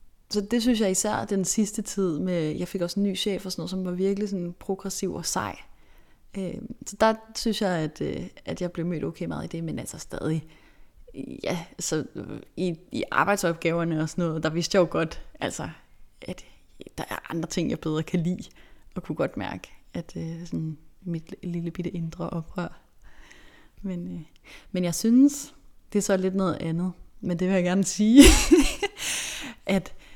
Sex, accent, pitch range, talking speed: female, native, 165-200 Hz, 175 wpm